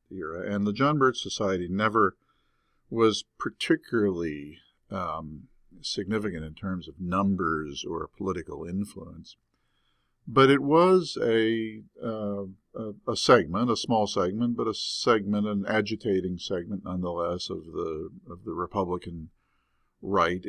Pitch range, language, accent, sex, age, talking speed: 80-105 Hz, English, American, male, 50-69, 125 wpm